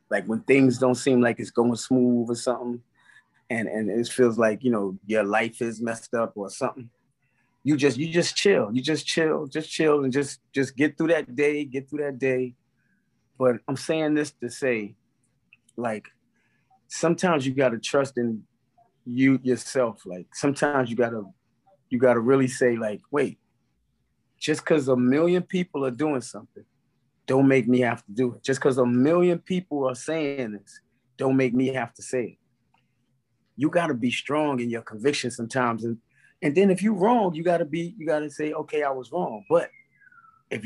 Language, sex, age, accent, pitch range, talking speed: English, male, 20-39, American, 120-155 Hz, 185 wpm